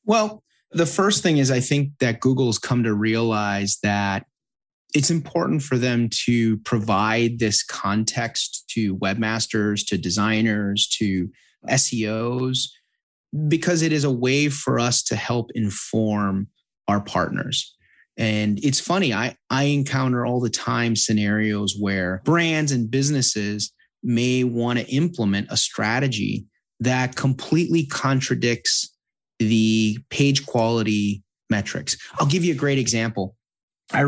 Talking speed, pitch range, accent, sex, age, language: 130 wpm, 110-140 Hz, American, male, 30-49, English